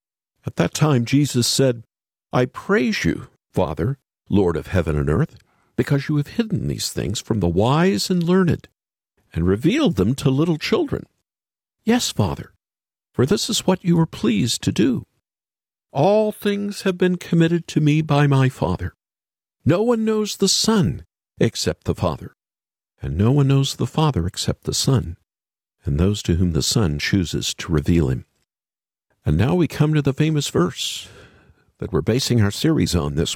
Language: English